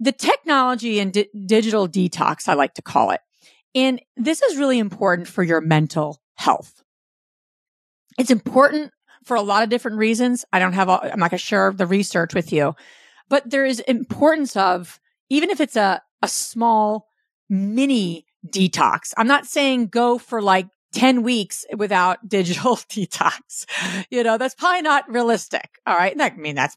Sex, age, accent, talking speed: female, 40-59, American, 165 wpm